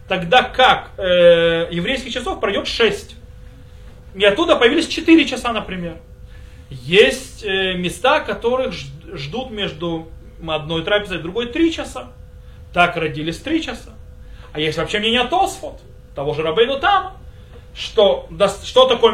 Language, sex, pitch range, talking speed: Russian, male, 160-245 Hz, 130 wpm